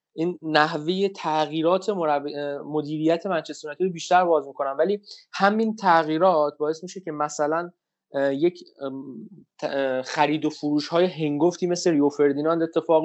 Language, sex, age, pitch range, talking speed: Persian, male, 20-39, 140-170 Hz, 125 wpm